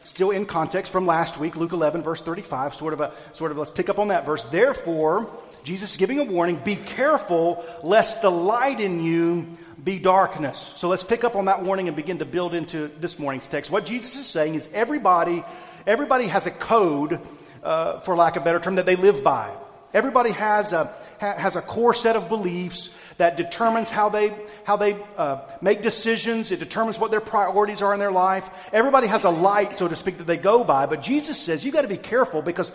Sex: male